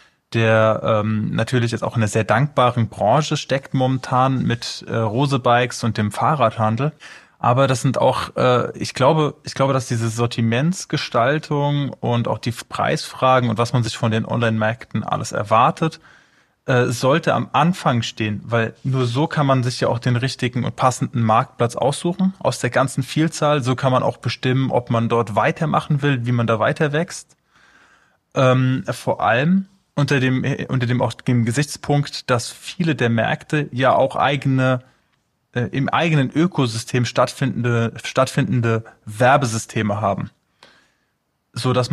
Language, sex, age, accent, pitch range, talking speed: German, male, 20-39, German, 120-140 Hz, 155 wpm